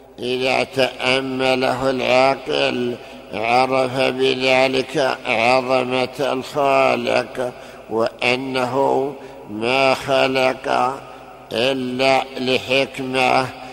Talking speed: 50 wpm